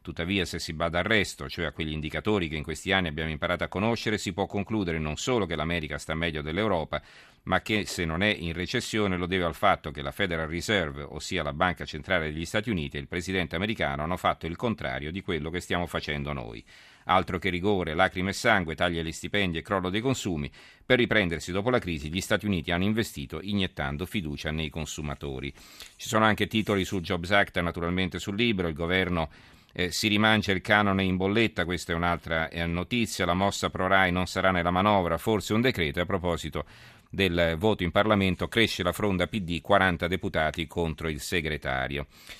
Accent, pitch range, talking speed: native, 85-100 Hz, 195 wpm